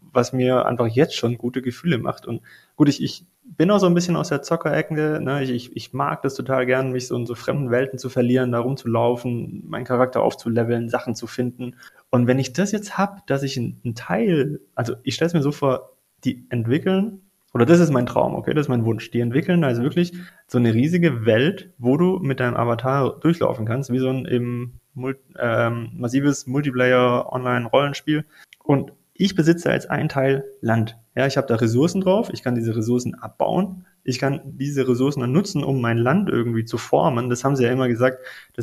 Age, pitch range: 20-39, 120-155 Hz